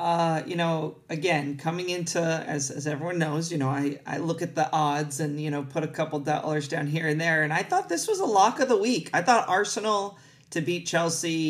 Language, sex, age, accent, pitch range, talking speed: English, male, 30-49, American, 145-170 Hz, 235 wpm